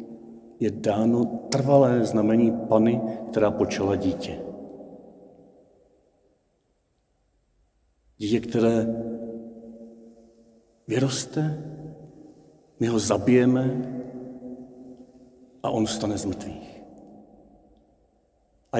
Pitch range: 115-140 Hz